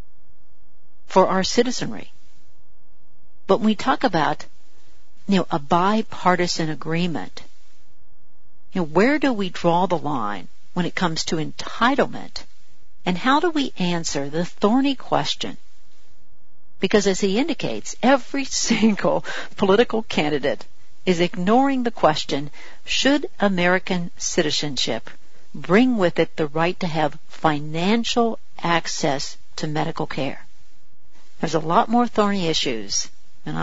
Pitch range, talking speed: 150-205 Hz, 115 wpm